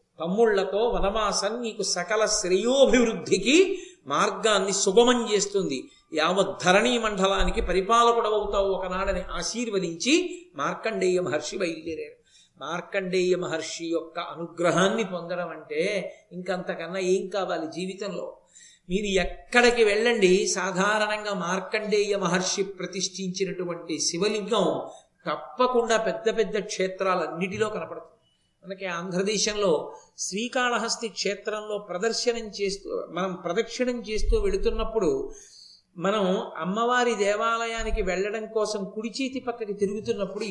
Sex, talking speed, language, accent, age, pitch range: male, 85 wpm, Telugu, native, 50-69, 185-230 Hz